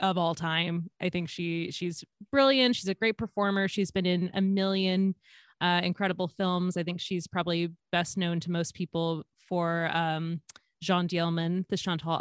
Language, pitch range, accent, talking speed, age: English, 170-205 Hz, American, 170 wpm, 20-39